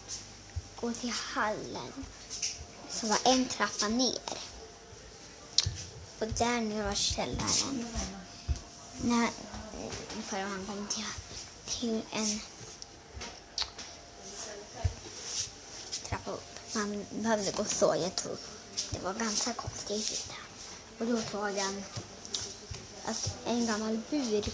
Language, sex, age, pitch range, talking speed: Swedish, male, 10-29, 200-235 Hz, 95 wpm